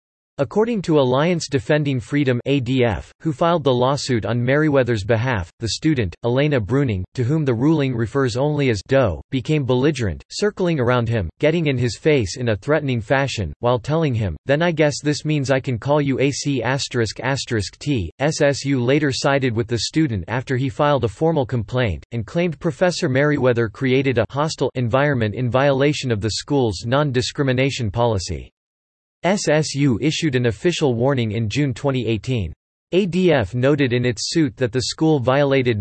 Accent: American